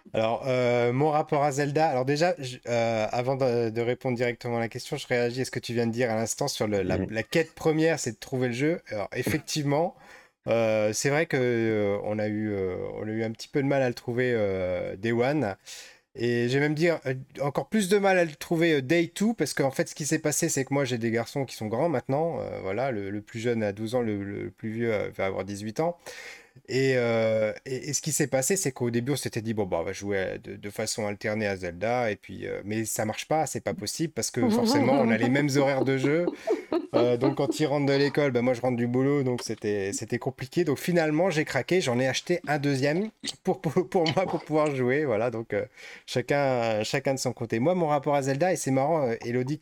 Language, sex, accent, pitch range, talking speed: French, male, French, 115-150 Hz, 250 wpm